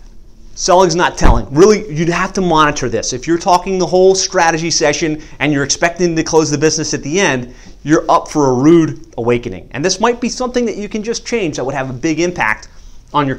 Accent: American